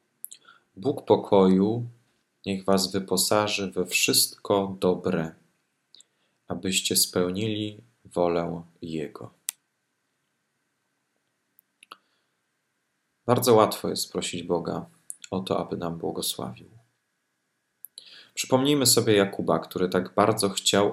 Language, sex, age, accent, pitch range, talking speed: Polish, male, 40-59, native, 85-100 Hz, 85 wpm